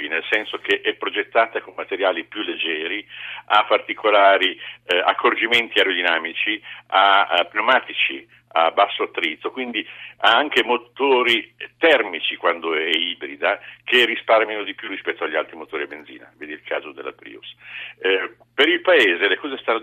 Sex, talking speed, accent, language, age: male, 150 wpm, native, Italian, 50-69